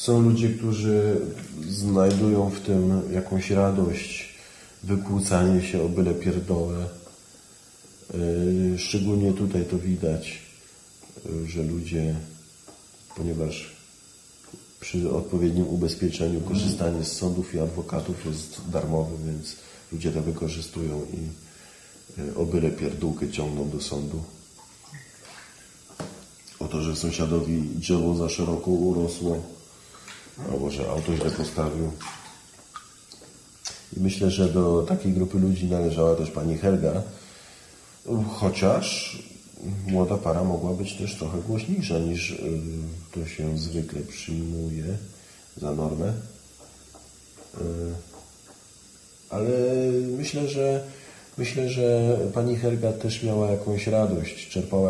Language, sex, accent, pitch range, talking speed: Polish, male, native, 80-100 Hz, 100 wpm